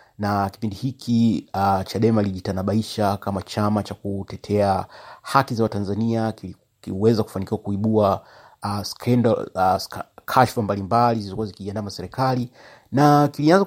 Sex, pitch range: male, 100-120 Hz